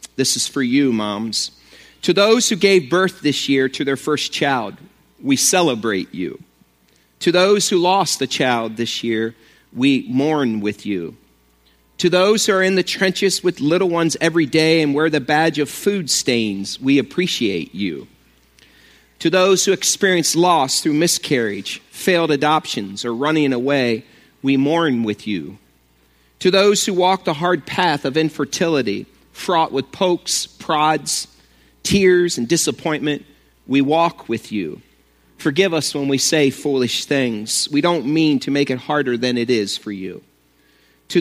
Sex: male